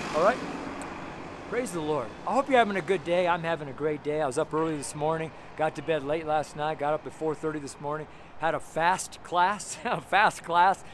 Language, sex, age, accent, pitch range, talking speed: English, male, 40-59, American, 135-165 Hz, 225 wpm